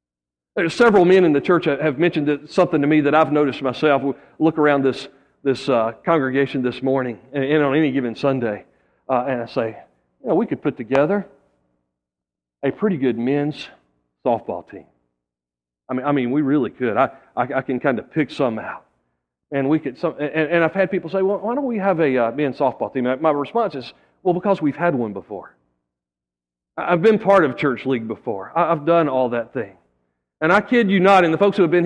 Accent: American